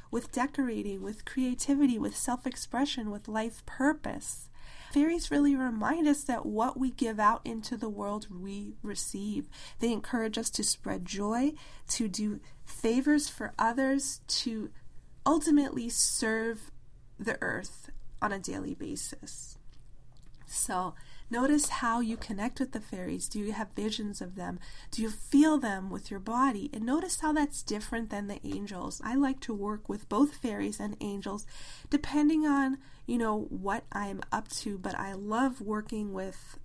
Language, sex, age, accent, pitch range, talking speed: English, female, 20-39, American, 210-260 Hz, 155 wpm